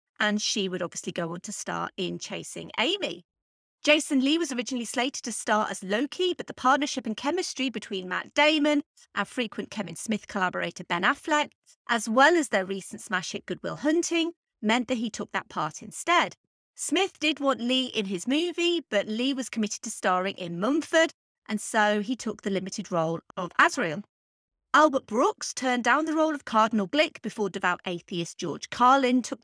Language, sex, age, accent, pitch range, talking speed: English, female, 30-49, British, 205-295 Hz, 185 wpm